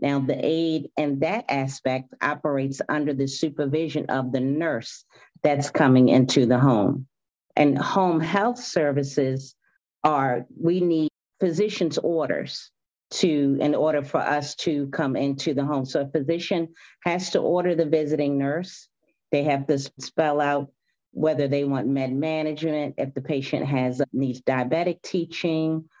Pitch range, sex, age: 140-155 Hz, female, 40-59